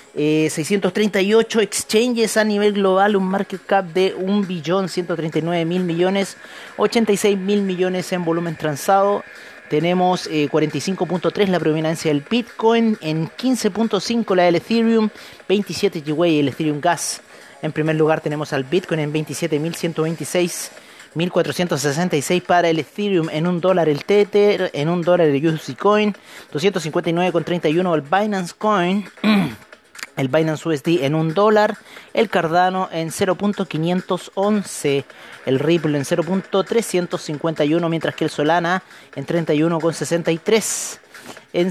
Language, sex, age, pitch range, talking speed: Spanish, male, 30-49, 160-205 Hz, 125 wpm